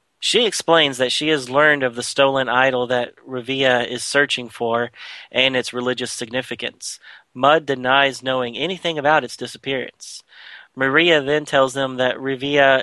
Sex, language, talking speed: male, English, 150 wpm